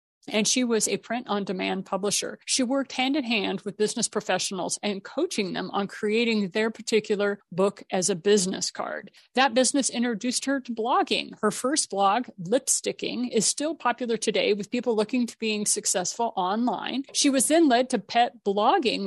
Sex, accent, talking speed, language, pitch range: female, American, 165 wpm, English, 205-265 Hz